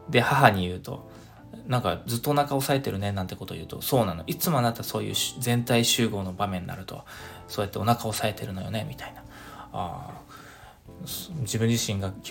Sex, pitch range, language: male, 110-145 Hz, Japanese